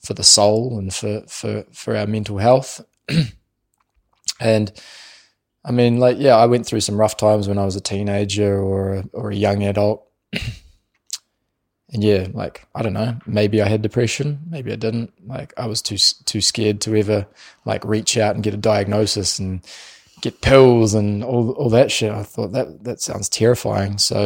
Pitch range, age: 100-115 Hz, 20-39